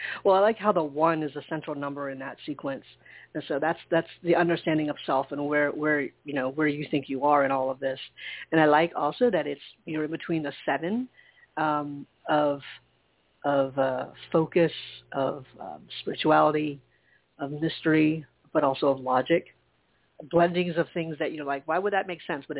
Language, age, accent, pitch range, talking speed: English, 40-59, American, 140-165 Hz, 190 wpm